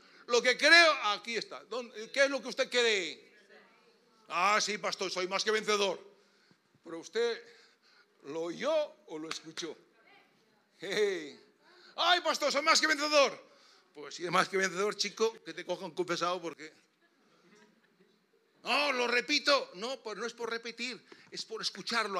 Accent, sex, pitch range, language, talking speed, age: Spanish, male, 180-245 Hz, Spanish, 155 wpm, 60-79